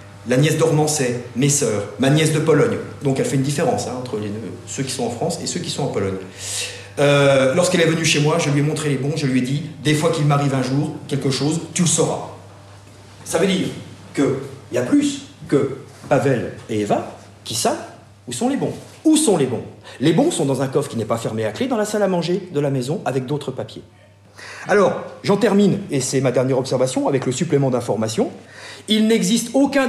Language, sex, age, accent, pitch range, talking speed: French, male, 50-69, French, 125-175 Hz, 235 wpm